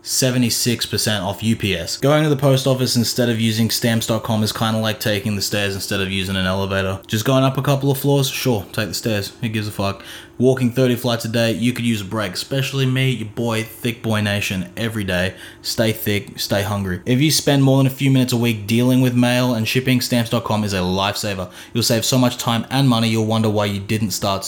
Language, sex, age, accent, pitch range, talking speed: English, male, 20-39, Australian, 105-125 Hz, 230 wpm